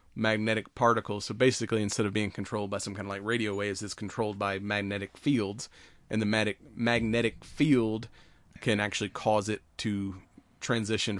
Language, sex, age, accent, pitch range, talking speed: English, male, 30-49, American, 100-115 Hz, 165 wpm